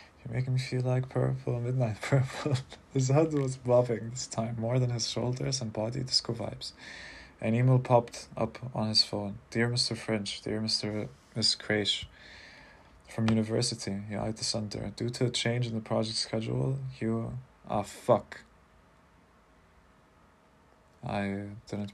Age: 20-39